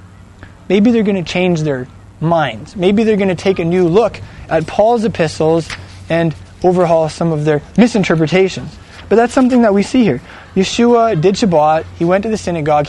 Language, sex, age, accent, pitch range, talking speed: English, male, 20-39, American, 160-225 Hz, 180 wpm